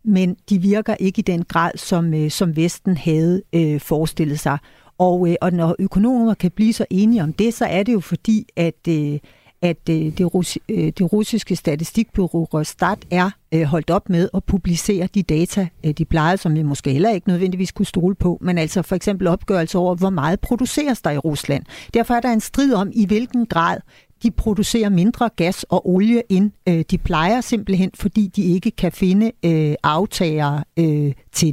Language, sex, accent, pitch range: Danish, female, native, 170-215 Hz